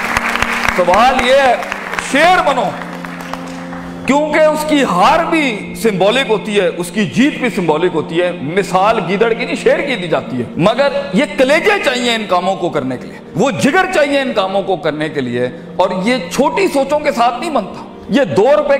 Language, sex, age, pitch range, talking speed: Urdu, male, 50-69, 205-295 Hz, 185 wpm